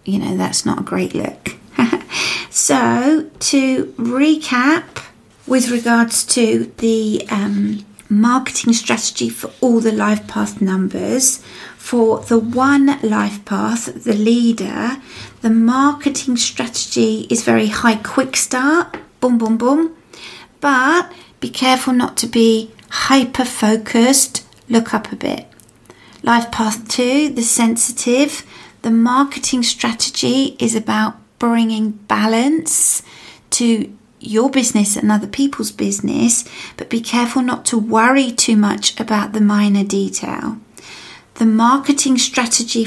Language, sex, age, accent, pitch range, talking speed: English, female, 40-59, British, 220-260 Hz, 120 wpm